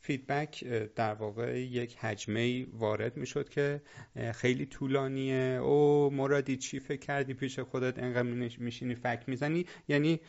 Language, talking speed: Persian, 135 wpm